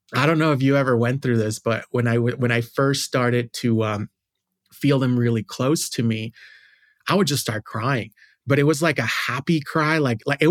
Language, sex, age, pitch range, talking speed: English, male, 30-49, 115-145 Hz, 225 wpm